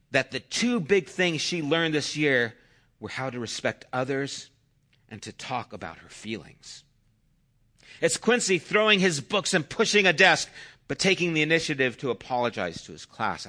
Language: English